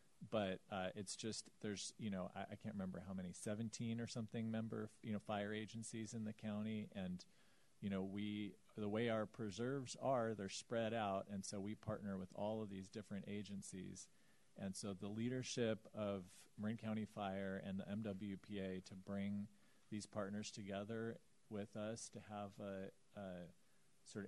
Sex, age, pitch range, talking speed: male, 40-59, 100-110 Hz, 170 wpm